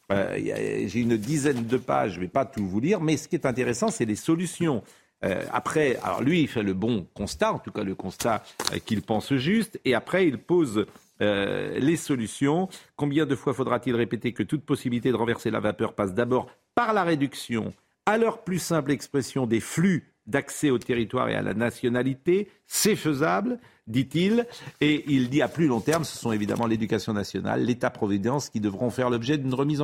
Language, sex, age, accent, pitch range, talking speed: French, male, 50-69, French, 115-170 Hz, 195 wpm